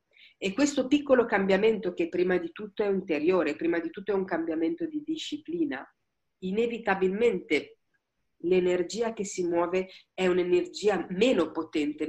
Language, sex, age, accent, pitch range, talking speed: Italian, female, 50-69, native, 160-220 Hz, 140 wpm